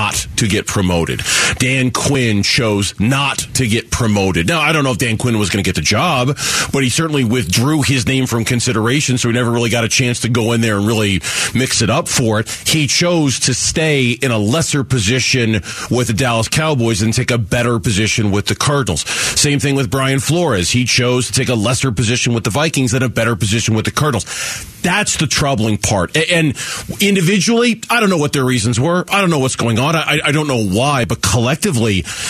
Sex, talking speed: male, 215 wpm